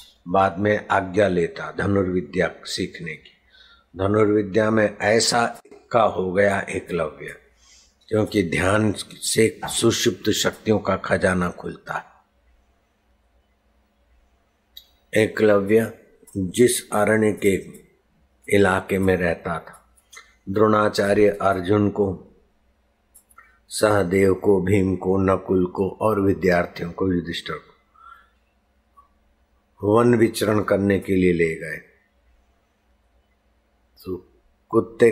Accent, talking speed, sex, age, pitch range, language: native, 90 wpm, male, 60-79, 80-105 Hz, Hindi